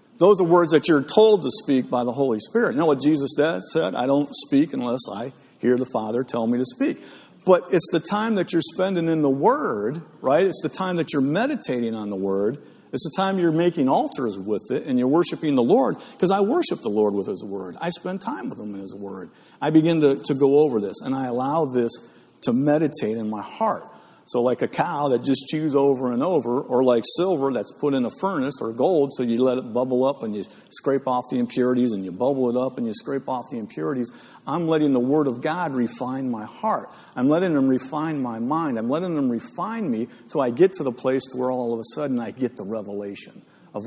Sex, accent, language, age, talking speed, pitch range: male, American, English, 50-69, 235 wpm, 120-160 Hz